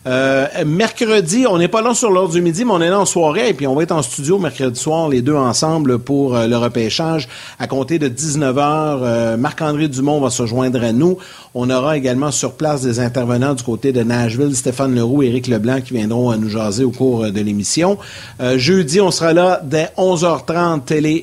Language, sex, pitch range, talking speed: French, male, 125-160 Hz, 220 wpm